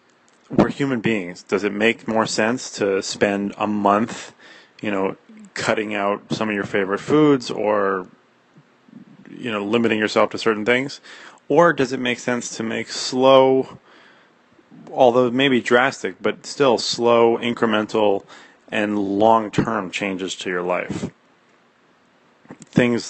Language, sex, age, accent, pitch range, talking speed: English, male, 30-49, American, 100-125 Hz, 130 wpm